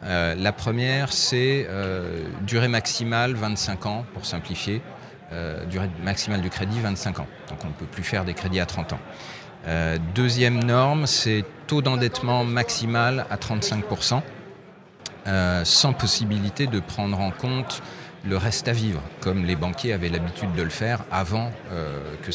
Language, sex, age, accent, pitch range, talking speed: French, male, 40-59, French, 95-125 Hz, 155 wpm